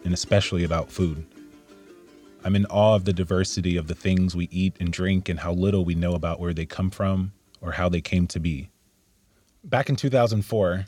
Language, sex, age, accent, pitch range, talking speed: English, male, 30-49, American, 90-105 Hz, 200 wpm